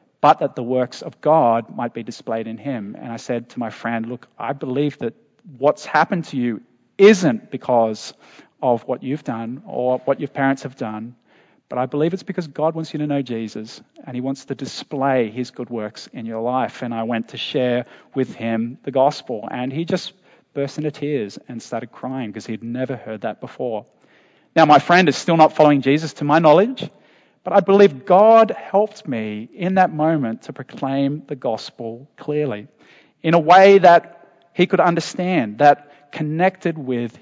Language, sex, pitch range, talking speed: English, male, 125-185 Hz, 190 wpm